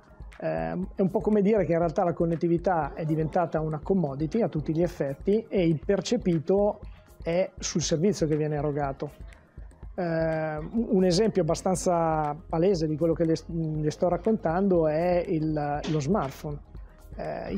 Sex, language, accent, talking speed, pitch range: male, Italian, native, 150 wpm, 155-190 Hz